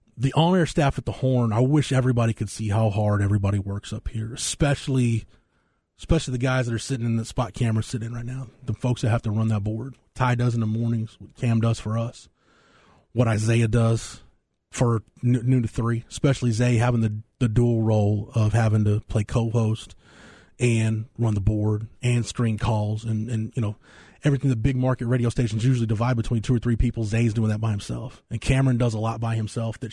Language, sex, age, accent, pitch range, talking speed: English, male, 30-49, American, 110-125 Hz, 215 wpm